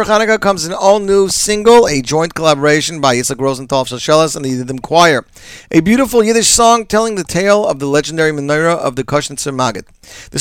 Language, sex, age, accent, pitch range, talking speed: English, male, 40-59, American, 135-175 Hz, 190 wpm